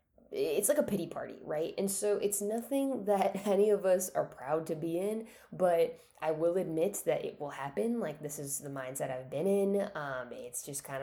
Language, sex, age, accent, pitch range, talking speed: English, female, 10-29, American, 155-210 Hz, 210 wpm